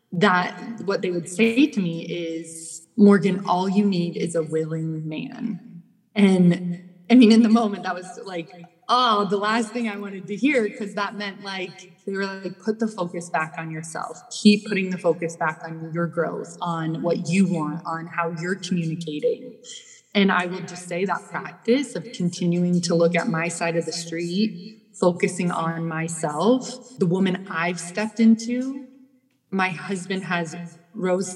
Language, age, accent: English, 20-39, American